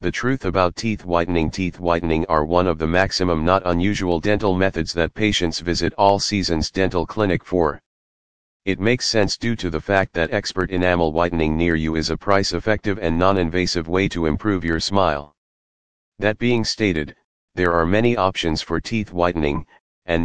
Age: 40-59